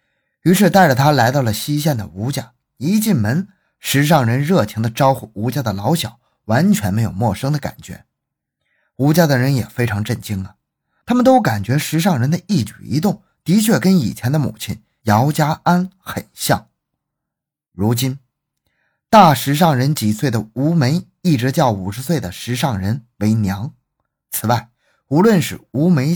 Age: 20-39